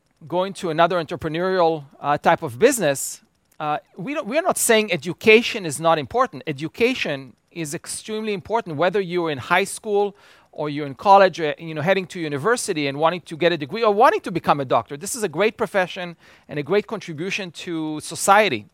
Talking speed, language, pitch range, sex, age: 190 wpm, English, 155-205 Hz, male, 40-59